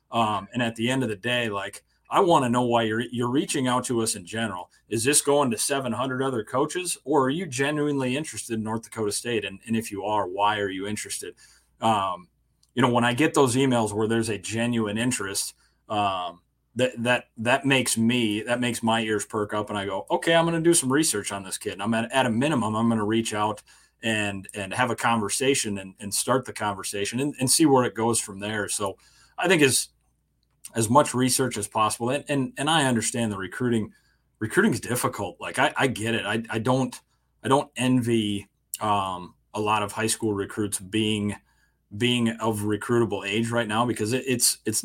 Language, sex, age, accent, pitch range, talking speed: English, male, 30-49, American, 105-125 Hz, 215 wpm